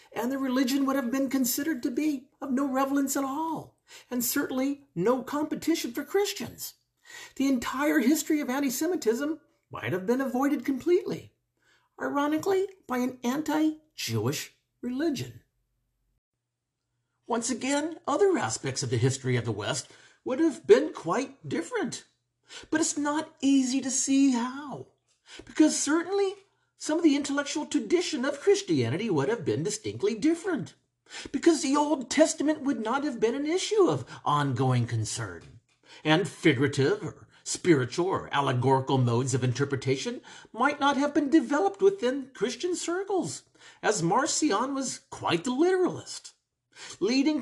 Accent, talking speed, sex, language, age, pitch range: American, 135 wpm, male, English, 50-69, 230-315 Hz